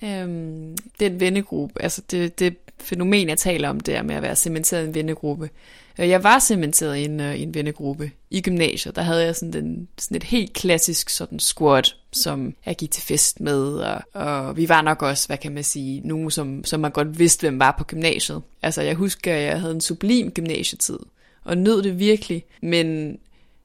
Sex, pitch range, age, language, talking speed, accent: female, 155-185 Hz, 20-39, Danish, 200 wpm, native